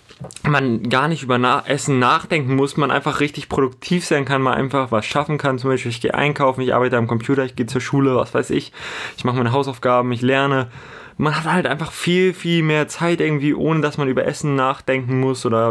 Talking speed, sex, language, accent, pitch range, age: 220 wpm, male, German, German, 120-140 Hz, 20-39